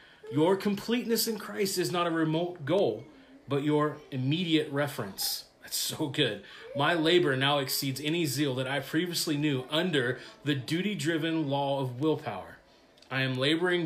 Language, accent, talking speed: English, American, 150 wpm